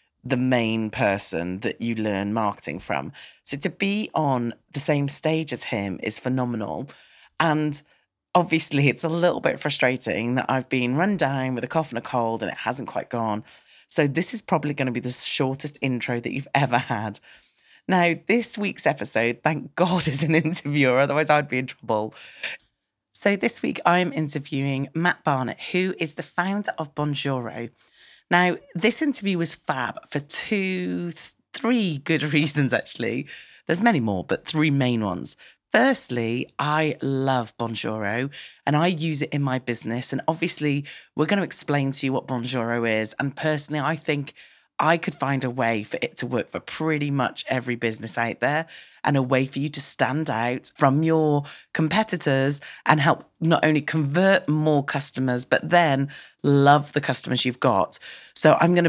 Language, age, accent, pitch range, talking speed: English, 30-49, British, 125-160 Hz, 175 wpm